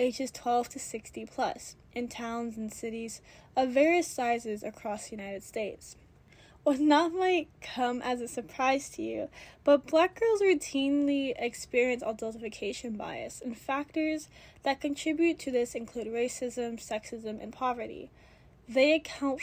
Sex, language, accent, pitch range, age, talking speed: female, English, American, 230-285 Hz, 10-29, 140 wpm